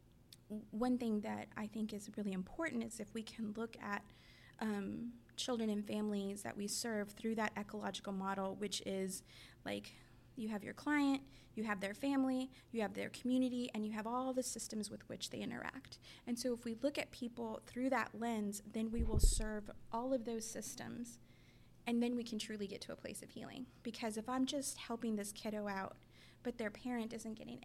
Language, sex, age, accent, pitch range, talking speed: English, female, 20-39, American, 215-245 Hz, 200 wpm